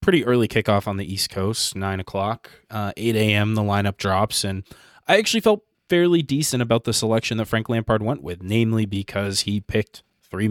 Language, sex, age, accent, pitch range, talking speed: English, male, 20-39, American, 100-115 Hz, 190 wpm